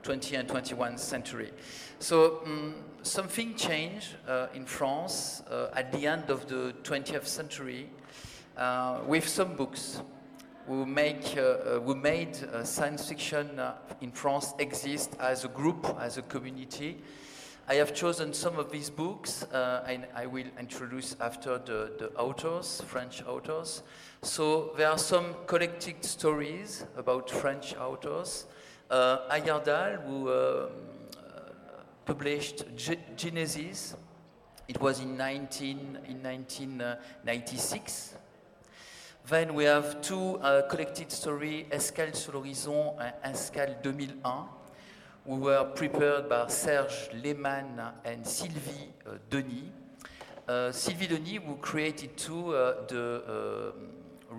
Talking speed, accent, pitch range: 125 wpm, French, 130-155 Hz